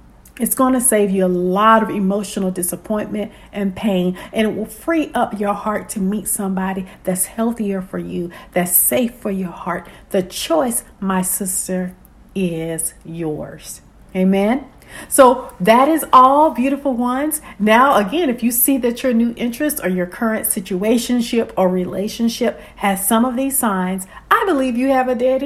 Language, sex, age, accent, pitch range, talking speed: English, female, 50-69, American, 195-260 Hz, 165 wpm